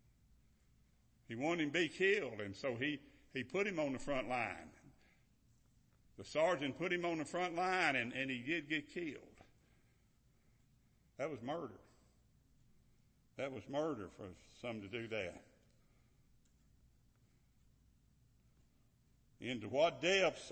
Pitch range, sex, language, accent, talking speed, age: 120-165 Hz, male, English, American, 130 wpm, 60-79